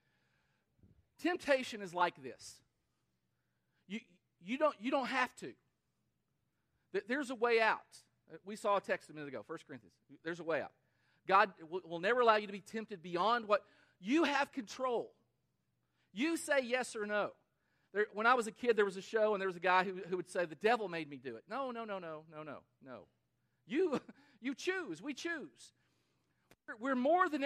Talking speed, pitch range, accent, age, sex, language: 190 wpm, 185-270 Hz, American, 40-59, male, English